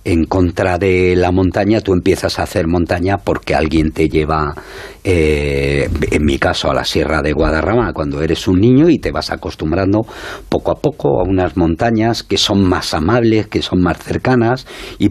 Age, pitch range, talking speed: 50-69, 80-105 Hz, 185 wpm